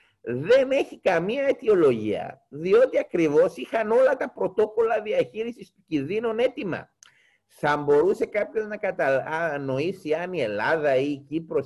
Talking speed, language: 130 wpm, Greek